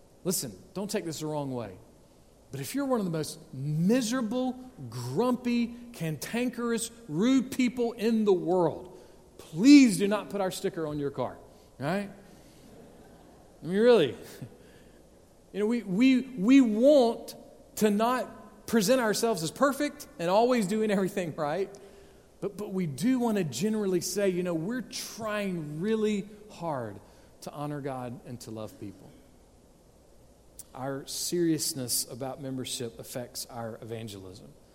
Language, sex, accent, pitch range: English, male, American, 130-200 Hz